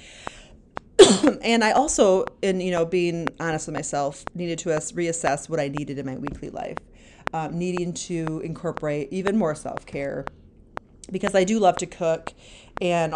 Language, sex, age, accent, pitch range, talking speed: English, female, 30-49, American, 155-190 Hz, 155 wpm